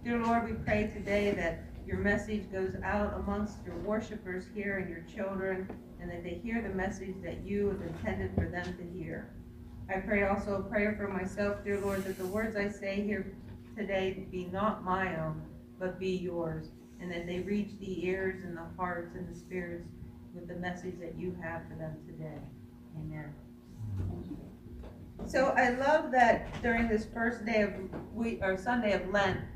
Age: 40-59